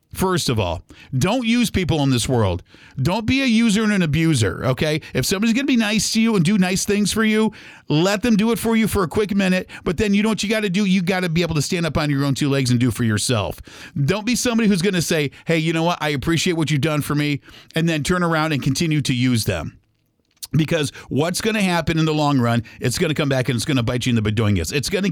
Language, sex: English, male